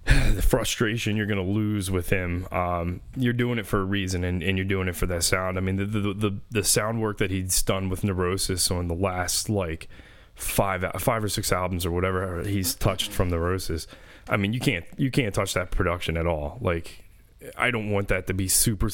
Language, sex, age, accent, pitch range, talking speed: English, male, 20-39, American, 95-115 Hz, 220 wpm